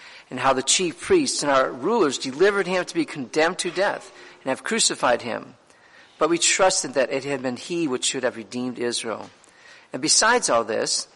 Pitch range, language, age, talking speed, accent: 125-175 Hz, English, 50-69, 195 wpm, American